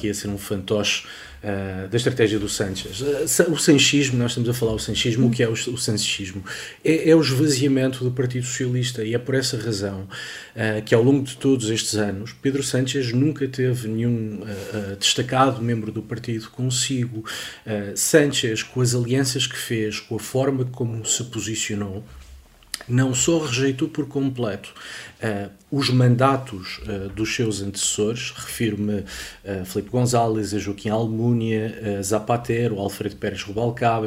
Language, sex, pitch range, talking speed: Portuguese, male, 105-130 Hz, 150 wpm